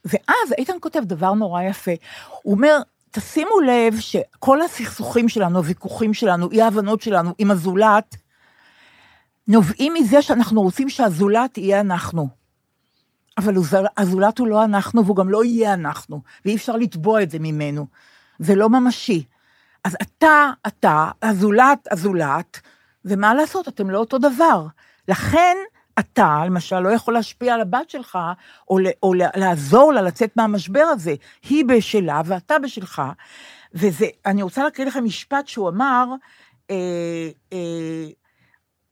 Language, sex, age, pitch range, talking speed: Hebrew, female, 50-69, 185-245 Hz, 135 wpm